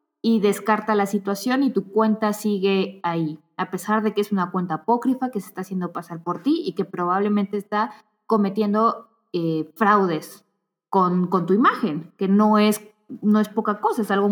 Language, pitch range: Spanish, 195-235 Hz